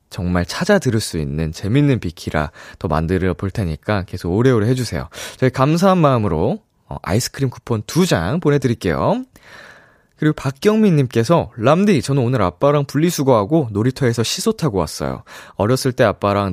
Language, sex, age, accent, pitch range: Korean, male, 20-39, native, 95-150 Hz